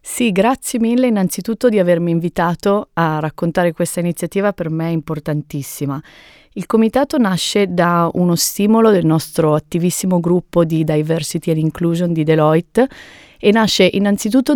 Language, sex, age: Italian, female, 30-49